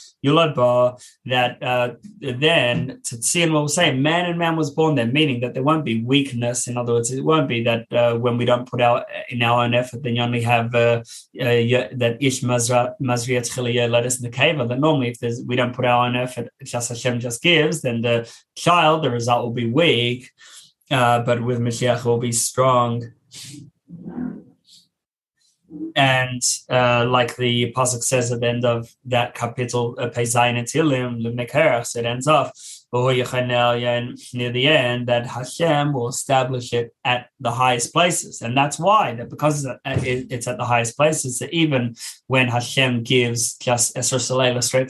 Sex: male